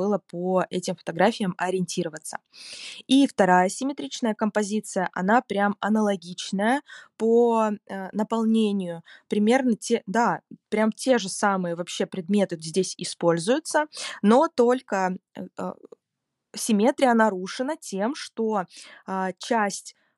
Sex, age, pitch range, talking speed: female, 20-39, 185-225 Hz, 95 wpm